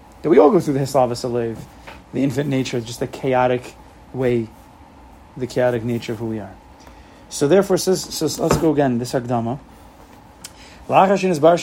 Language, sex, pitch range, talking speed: English, male, 130-165 Hz, 175 wpm